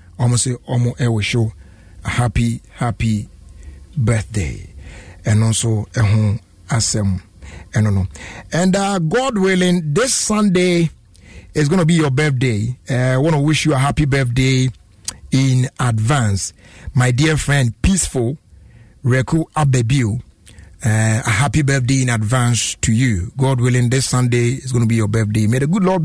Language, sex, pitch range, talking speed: English, male, 105-150 Hz, 155 wpm